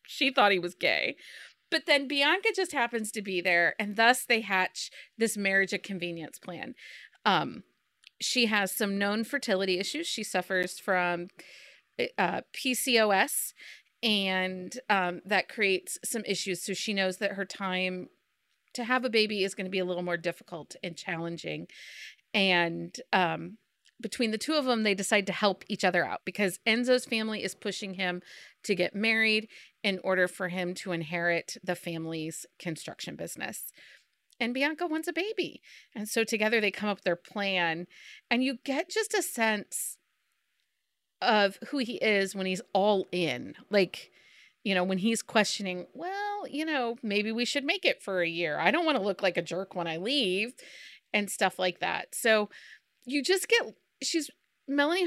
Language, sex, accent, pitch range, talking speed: English, female, American, 185-240 Hz, 175 wpm